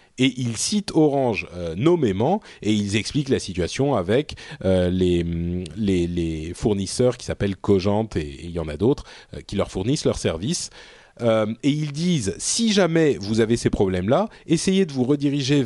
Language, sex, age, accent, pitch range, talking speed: French, male, 30-49, French, 95-130 Hz, 165 wpm